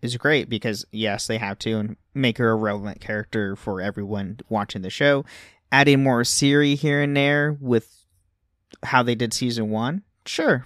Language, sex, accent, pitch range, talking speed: English, male, American, 95-125 Hz, 175 wpm